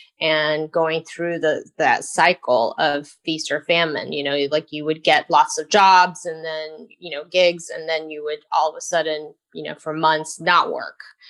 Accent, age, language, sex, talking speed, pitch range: American, 30-49, English, female, 200 wpm, 155-180 Hz